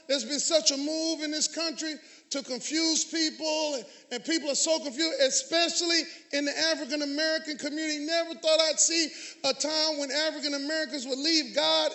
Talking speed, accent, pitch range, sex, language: 170 wpm, American, 295-325 Hz, male, English